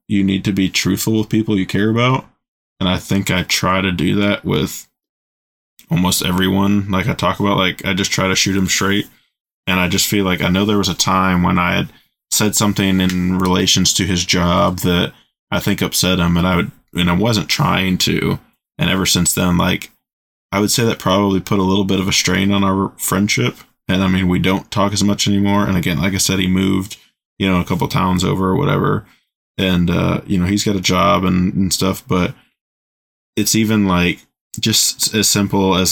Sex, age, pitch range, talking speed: male, 20-39, 90-100 Hz, 220 wpm